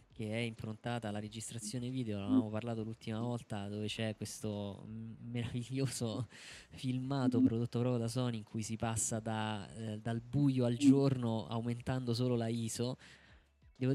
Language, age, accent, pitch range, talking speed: Italian, 20-39, native, 110-125 Hz, 140 wpm